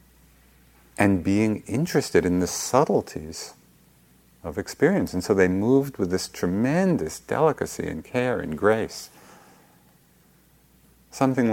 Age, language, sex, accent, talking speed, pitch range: 50-69, English, male, American, 110 wpm, 80-105 Hz